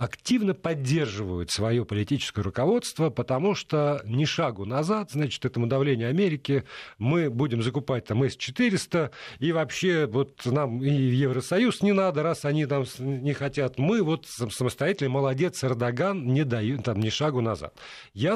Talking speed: 145 wpm